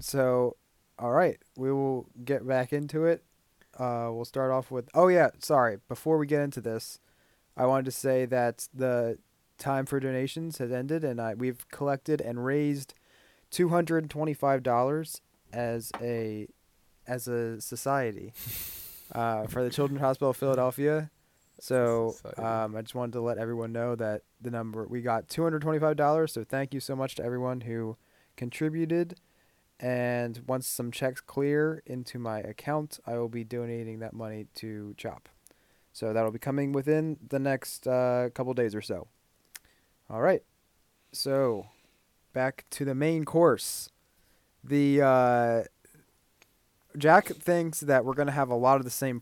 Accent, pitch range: American, 120-145 Hz